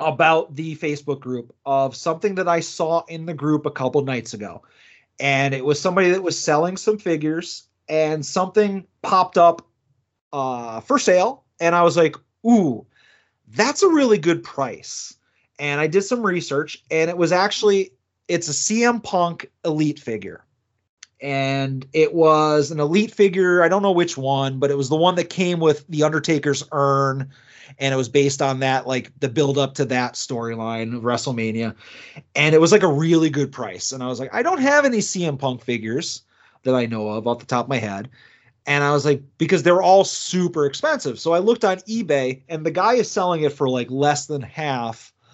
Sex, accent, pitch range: male, American, 135-175 Hz